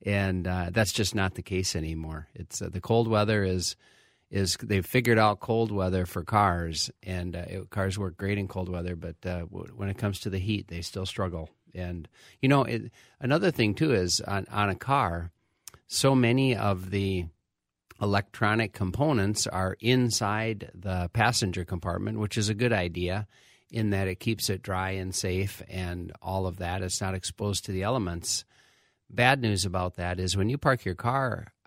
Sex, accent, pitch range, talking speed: male, American, 90-105 Hz, 190 wpm